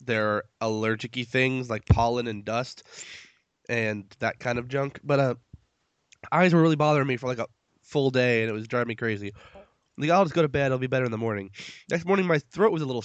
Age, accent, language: 20-39, American, English